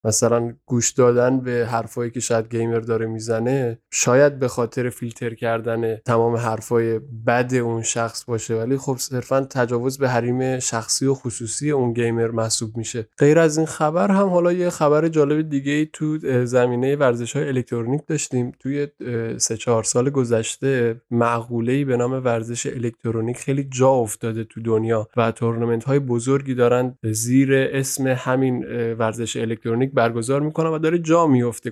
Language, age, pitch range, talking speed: Persian, 20-39, 115-140 Hz, 150 wpm